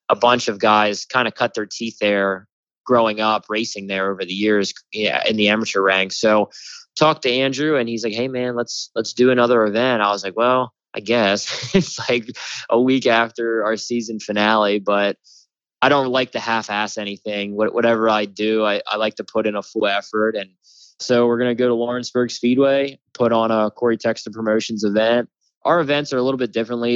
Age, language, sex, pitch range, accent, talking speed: 20-39, English, male, 105-125 Hz, American, 205 wpm